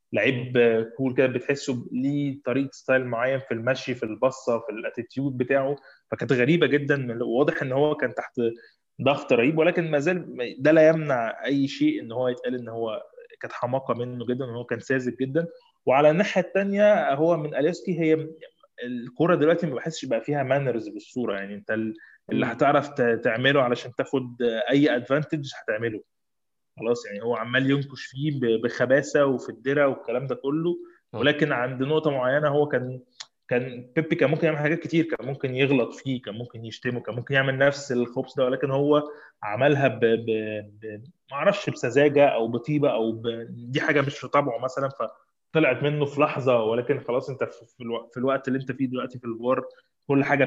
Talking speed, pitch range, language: 165 wpm, 125-150 Hz, Arabic